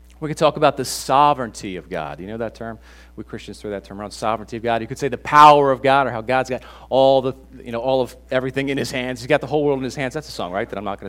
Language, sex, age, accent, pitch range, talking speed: English, male, 40-59, American, 155-200 Hz, 315 wpm